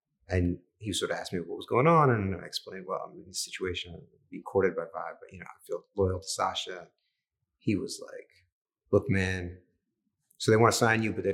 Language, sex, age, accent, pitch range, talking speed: English, male, 30-49, American, 90-115 Hz, 220 wpm